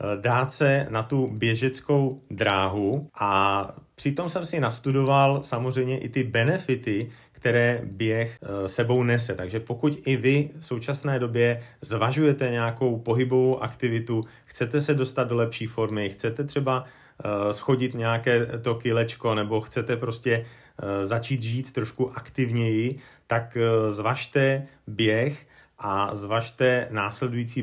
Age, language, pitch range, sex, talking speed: 30-49, Slovak, 110-130 Hz, male, 120 wpm